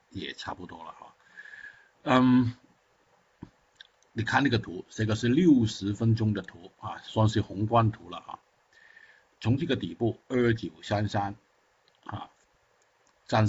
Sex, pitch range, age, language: male, 95-120 Hz, 60-79, Chinese